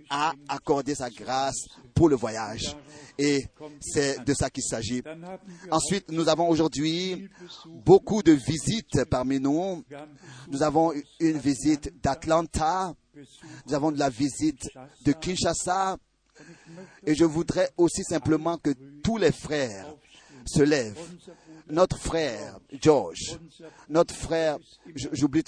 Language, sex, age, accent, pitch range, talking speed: French, male, 40-59, French, 140-160 Hz, 120 wpm